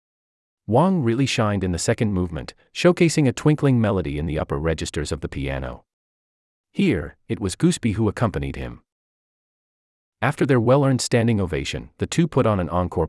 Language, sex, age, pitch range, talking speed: English, male, 30-49, 75-115 Hz, 165 wpm